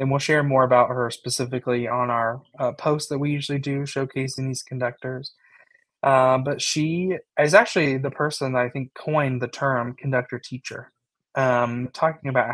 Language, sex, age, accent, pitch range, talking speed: English, male, 20-39, American, 125-140 Hz, 170 wpm